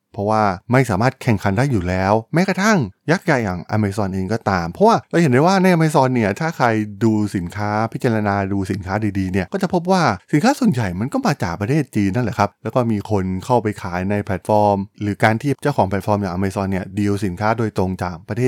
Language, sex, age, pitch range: Thai, male, 20-39, 100-130 Hz